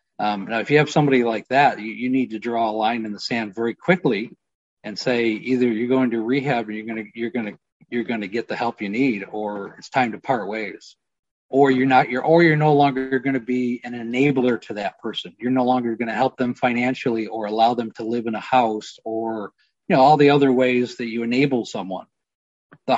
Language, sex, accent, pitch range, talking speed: English, male, American, 115-140 Hz, 230 wpm